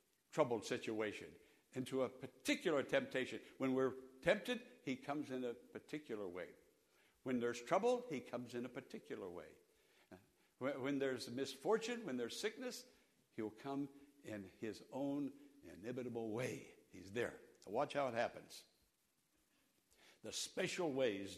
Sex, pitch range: male, 135-220 Hz